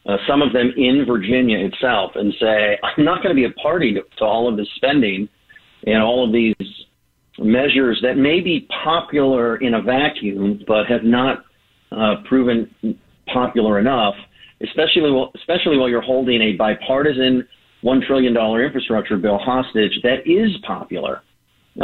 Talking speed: 160 wpm